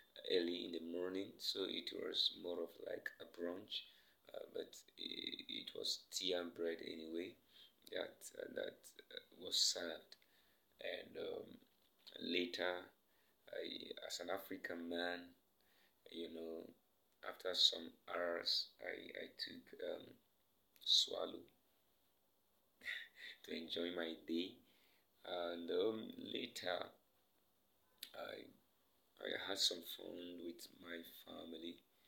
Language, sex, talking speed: English, male, 110 wpm